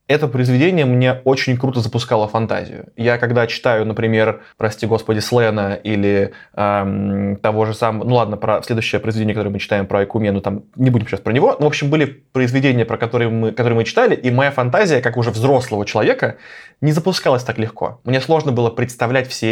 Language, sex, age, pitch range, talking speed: Russian, male, 20-39, 110-135 Hz, 190 wpm